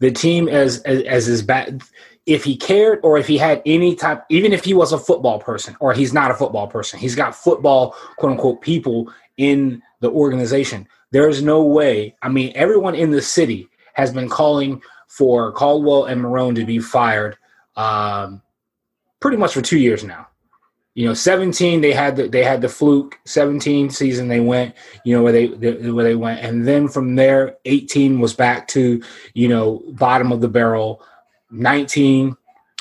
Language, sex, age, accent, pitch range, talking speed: English, male, 20-39, American, 120-145 Hz, 185 wpm